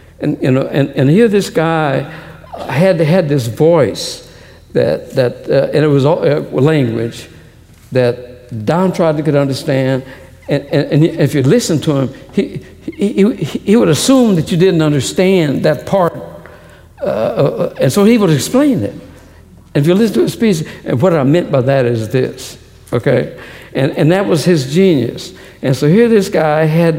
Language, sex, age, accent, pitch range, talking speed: English, male, 60-79, American, 135-175 Hz, 185 wpm